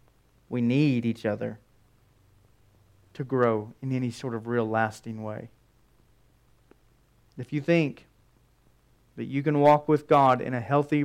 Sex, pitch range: male, 115-145 Hz